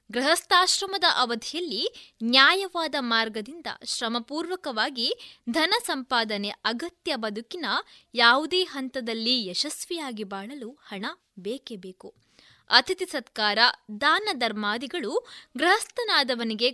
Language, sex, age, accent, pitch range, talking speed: Kannada, female, 20-39, native, 225-355 Hz, 75 wpm